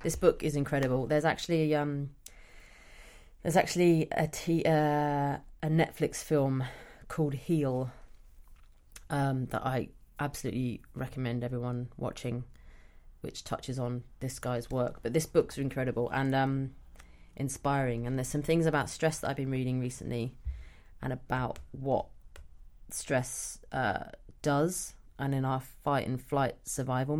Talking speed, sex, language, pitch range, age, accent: 130 wpm, female, English, 115-145 Hz, 30-49, British